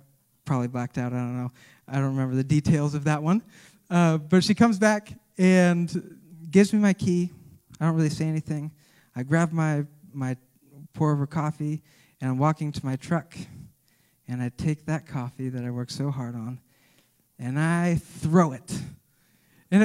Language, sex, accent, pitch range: English, male, American, 130-165 Hz